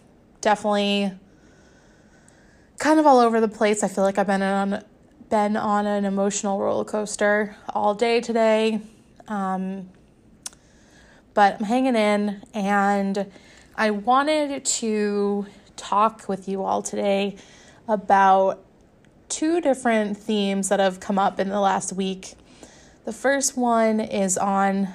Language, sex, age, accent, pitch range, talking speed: English, female, 20-39, American, 200-225 Hz, 125 wpm